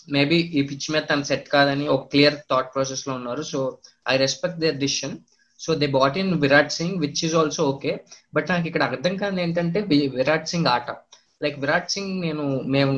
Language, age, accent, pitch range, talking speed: Telugu, 20-39, native, 140-165 Hz, 190 wpm